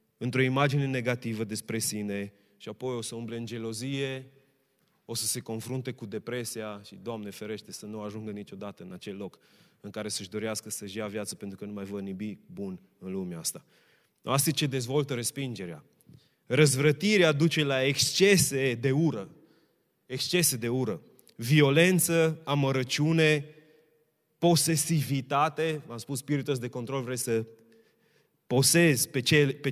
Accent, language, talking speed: native, Romanian, 145 wpm